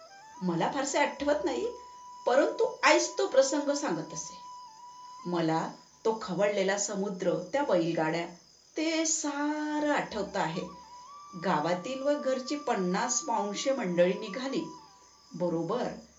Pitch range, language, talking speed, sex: 190-300 Hz, Marathi, 105 wpm, female